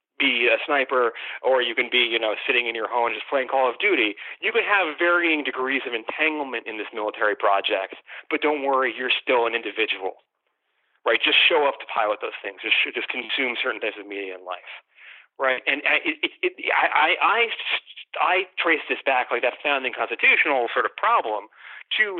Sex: male